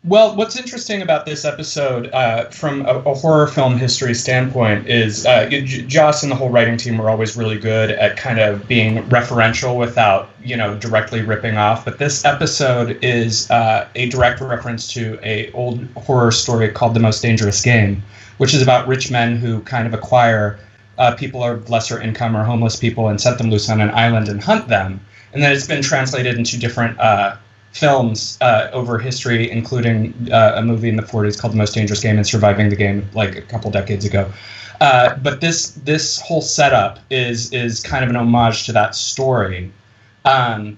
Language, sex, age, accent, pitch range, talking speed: English, male, 30-49, American, 110-130 Hz, 195 wpm